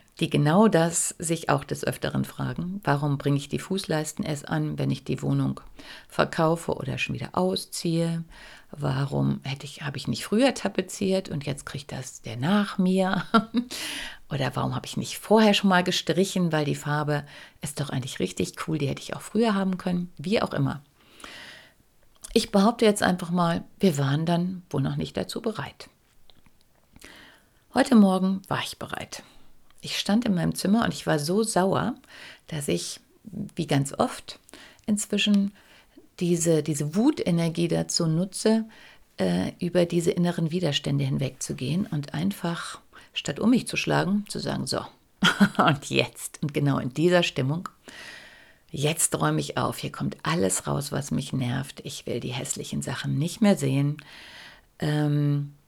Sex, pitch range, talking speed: female, 145-200 Hz, 155 wpm